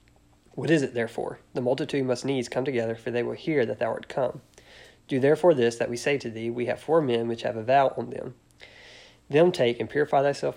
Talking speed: 235 wpm